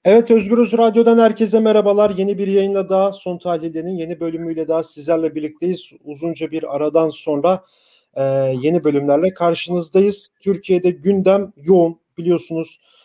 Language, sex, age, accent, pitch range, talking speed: German, male, 40-59, Turkish, 155-195 Hz, 130 wpm